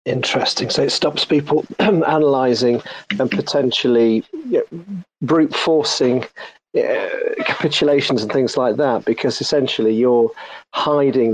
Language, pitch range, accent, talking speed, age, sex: English, 115-130 Hz, British, 105 wpm, 40-59, male